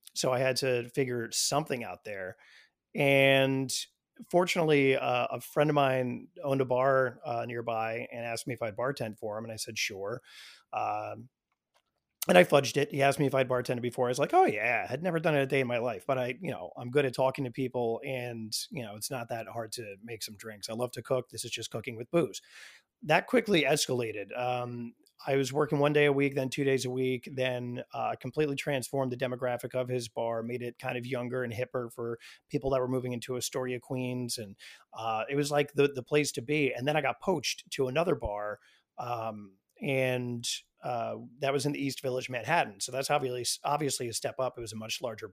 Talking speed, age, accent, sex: 225 wpm, 30-49, American, male